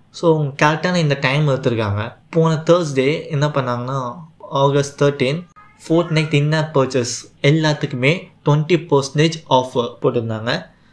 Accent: native